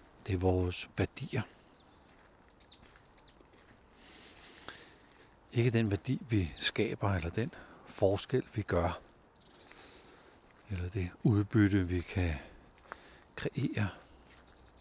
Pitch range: 85-110 Hz